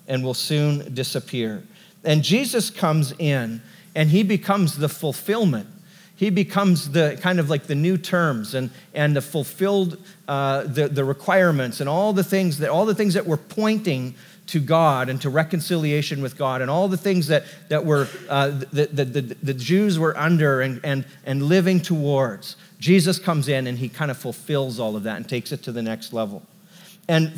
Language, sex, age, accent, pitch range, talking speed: English, male, 40-59, American, 140-185 Hz, 190 wpm